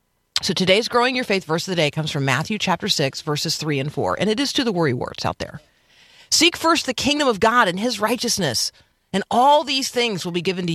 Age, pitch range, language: 40-59, 135-195 Hz, English